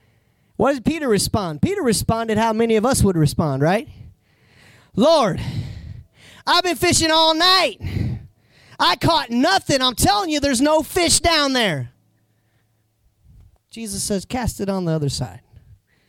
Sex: male